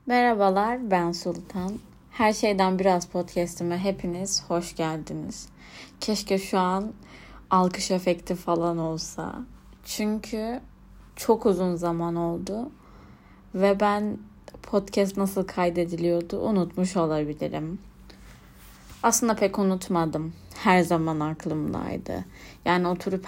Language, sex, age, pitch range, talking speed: Turkish, female, 30-49, 165-195 Hz, 95 wpm